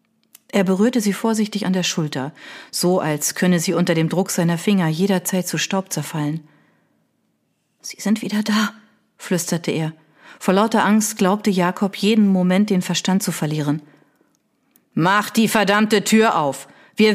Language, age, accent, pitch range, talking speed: German, 40-59, German, 170-210 Hz, 150 wpm